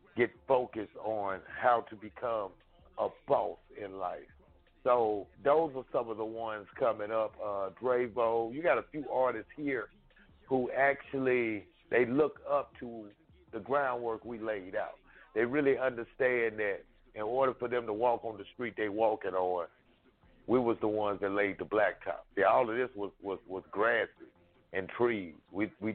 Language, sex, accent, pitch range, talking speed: English, male, American, 105-125 Hz, 170 wpm